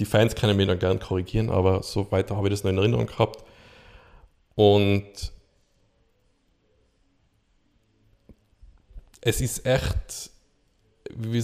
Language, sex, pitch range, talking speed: German, male, 95-110 Hz, 115 wpm